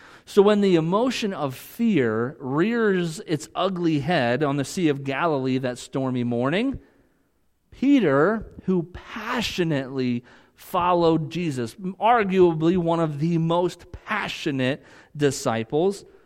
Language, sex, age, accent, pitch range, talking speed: English, male, 40-59, American, 120-170 Hz, 110 wpm